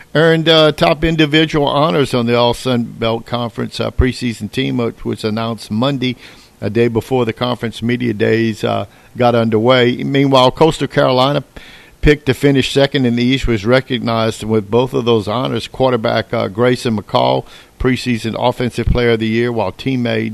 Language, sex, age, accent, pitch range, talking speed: English, male, 50-69, American, 110-125 Hz, 165 wpm